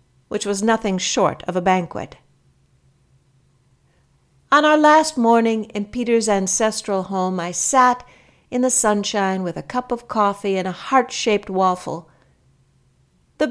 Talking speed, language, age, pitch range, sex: 135 wpm, English, 60-79, 140-230 Hz, female